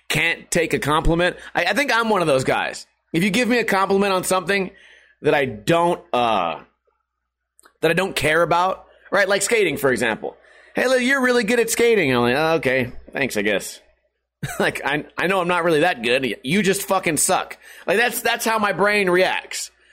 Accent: American